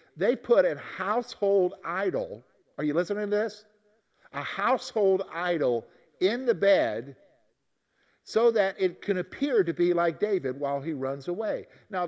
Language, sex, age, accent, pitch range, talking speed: English, male, 50-69, American, 170-245 Hz, 150 wpm